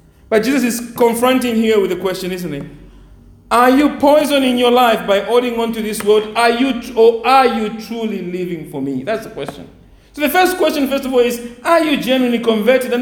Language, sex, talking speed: English, male, 215 wpm